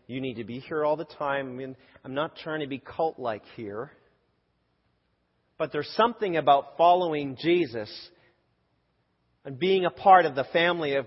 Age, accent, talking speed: 40-59, American, 170 wpm